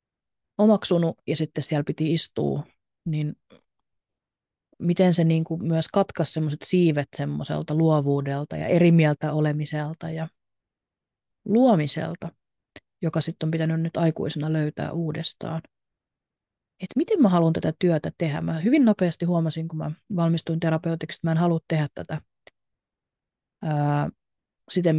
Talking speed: 125 wpm